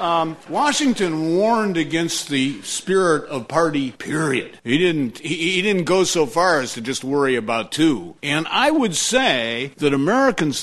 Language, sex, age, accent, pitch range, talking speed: English, male, 50-69, American, 125-175 Hz, 165 wpm